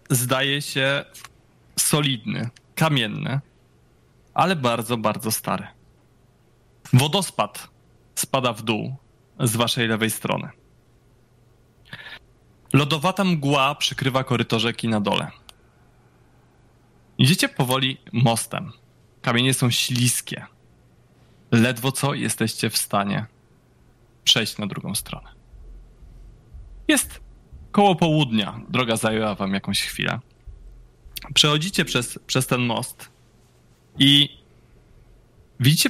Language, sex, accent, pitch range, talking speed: Polish, male, native, 115-145 Hz, 90 wpm